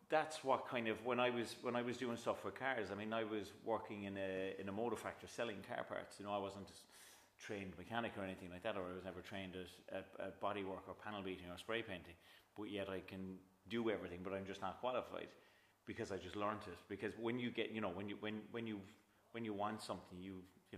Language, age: English, 30-49